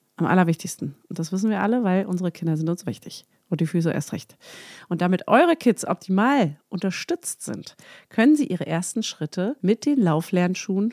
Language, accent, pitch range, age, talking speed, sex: German, German, 175-245 Hz, 30-49, 180 wpm, female